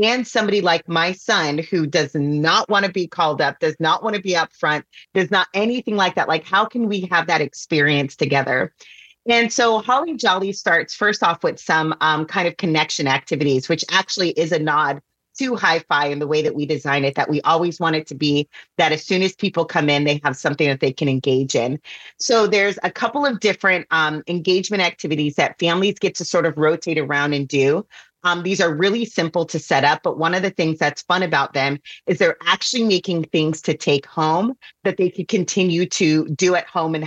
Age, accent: 30-49, American